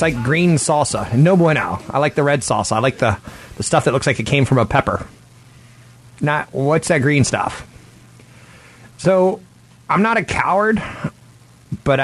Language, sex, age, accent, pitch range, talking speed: English, male, 30-49, American, 115-150 Hz, 170 wpm